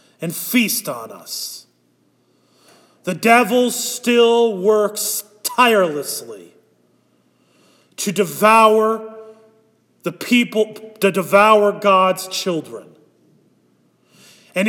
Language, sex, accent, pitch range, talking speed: English, male, American, 195-260 Hz, 75 wpm